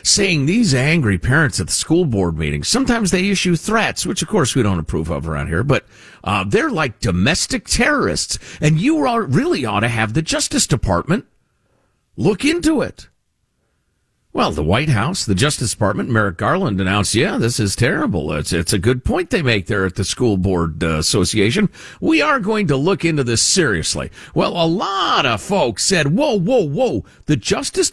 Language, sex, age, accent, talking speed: English, male, 50-69, American, 185 wpm